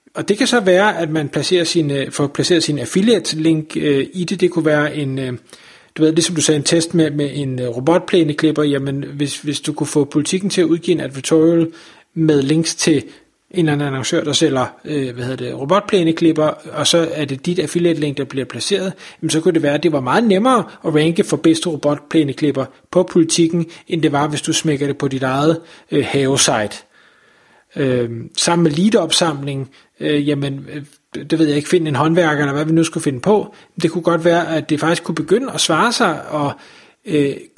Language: Danish